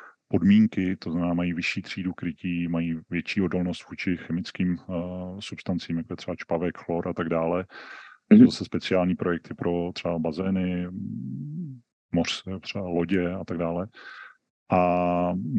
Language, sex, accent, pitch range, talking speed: Czech, male, native, 85-90 Hz, 140 wpm